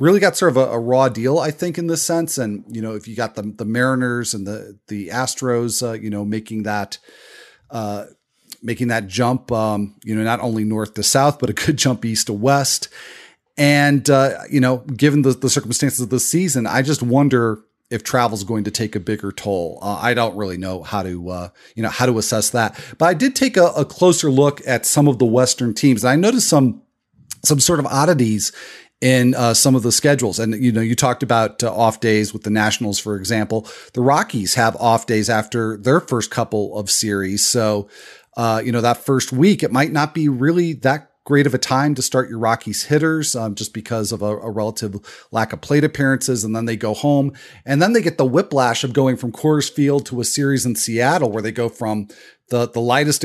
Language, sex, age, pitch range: English, male, 30-49, 110-140 Hz